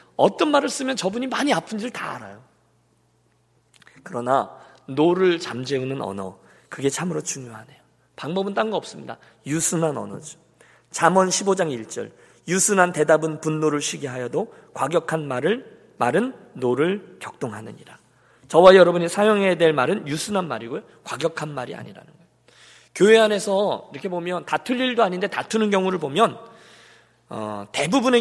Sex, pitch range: male, 140-200 Hz